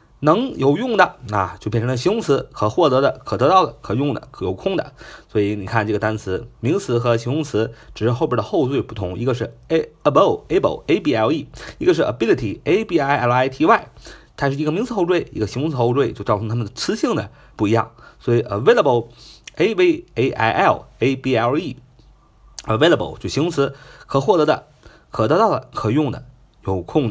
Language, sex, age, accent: Chinese, male, 30-49, native